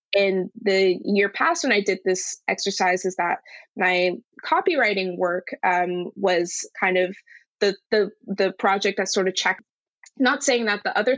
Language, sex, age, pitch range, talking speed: English, female, 20-39, 180-205 Hz, 165 wpm